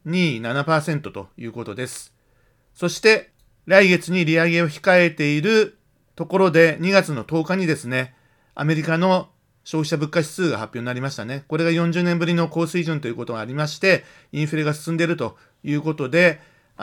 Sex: male